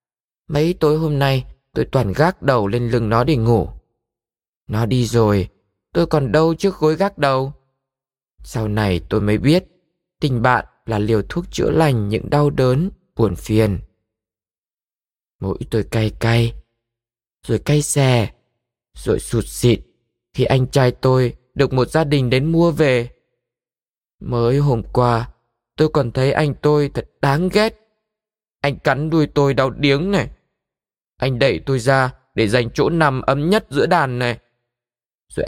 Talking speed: 155 wpm